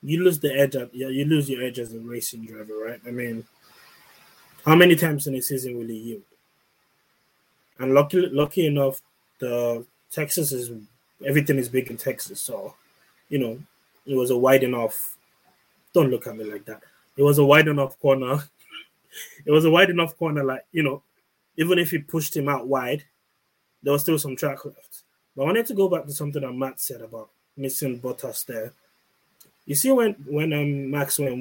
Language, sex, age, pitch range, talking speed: English, male, 20-39, 130-150 Hz, 195 wpm